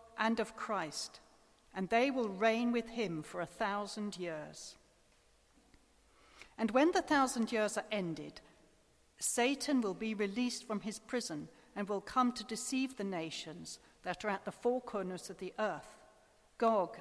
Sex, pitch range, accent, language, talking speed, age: female, 195-230 Hz, British, English, 155 wpm, 40-59